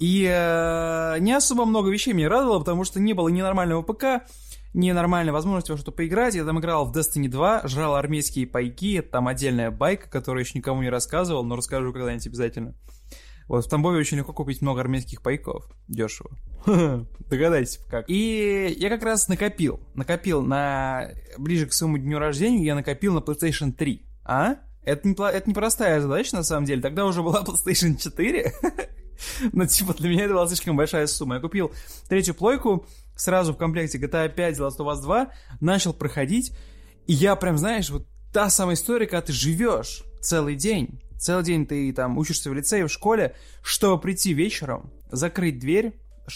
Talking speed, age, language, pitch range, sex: 175 wpm, 20-39, Russian, 140-190 Hz, male